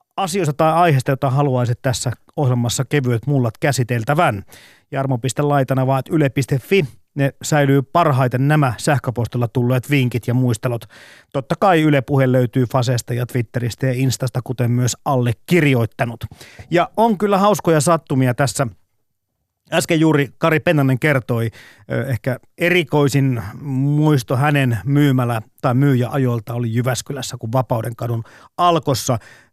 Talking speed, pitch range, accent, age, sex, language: 120 wpm, 125-150 Hz, native, 30-49, male, Finnish